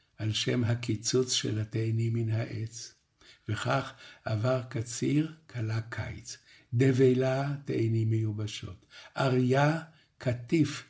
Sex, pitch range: male, 115-135 Hz